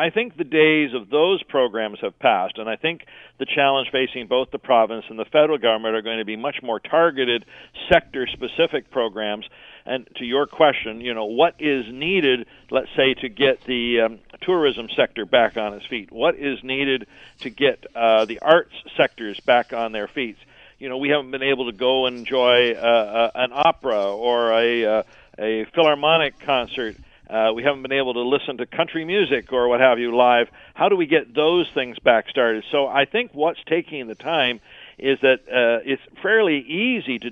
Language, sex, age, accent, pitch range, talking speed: English, male, 50-69, American, 115-150 Hz, 195 wpm